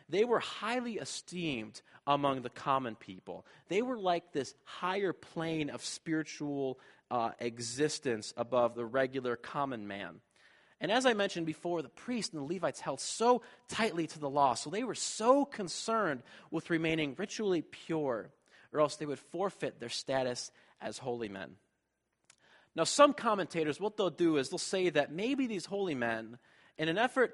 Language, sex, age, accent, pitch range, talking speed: English, male, 30-49, American, 125-185 Hz, 165 wpm